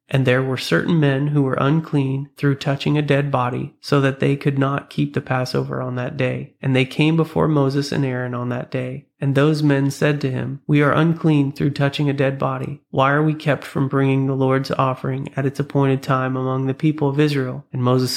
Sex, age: male, 30-49